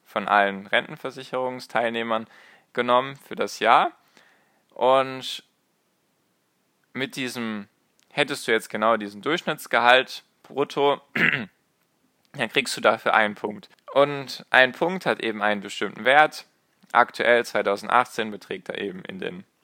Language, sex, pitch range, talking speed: German, male, 105-125 Hz, 115 wpm